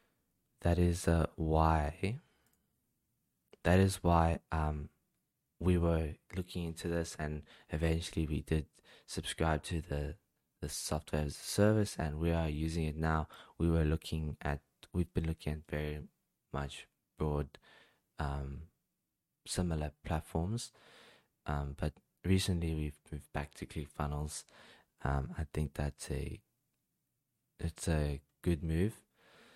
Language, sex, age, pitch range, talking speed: English, male, 20-39, 75-90 Hz, 125 wpm